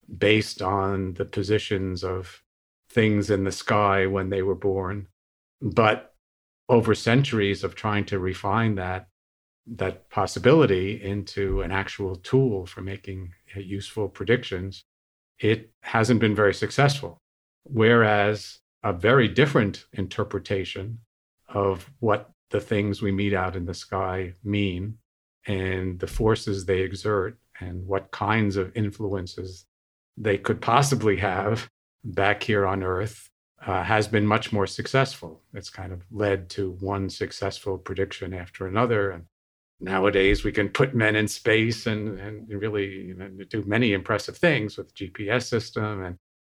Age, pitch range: 50-69, 95-110 Hz